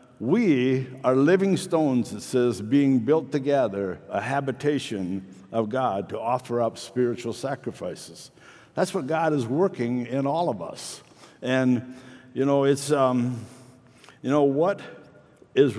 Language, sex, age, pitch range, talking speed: English, male, 60-79, 125-165 Hz, 135 wpm